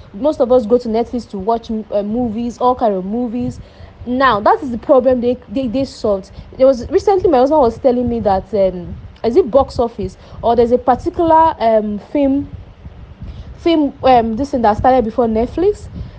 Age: 30-49